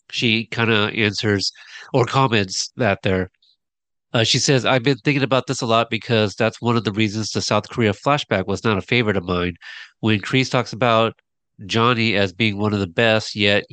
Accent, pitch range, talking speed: American, 100-120 Hz, 200 wpm